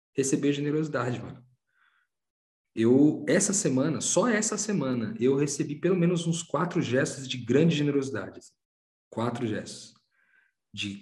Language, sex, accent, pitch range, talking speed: Portuguese, male, Brazilian, 115-150 Hz, 120 wpm